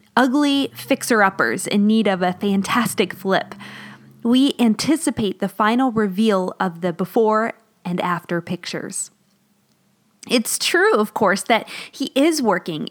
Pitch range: 185-245 Hz